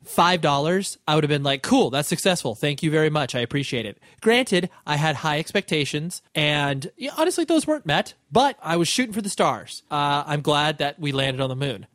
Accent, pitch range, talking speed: American, 135-175 Hz, 215 wpm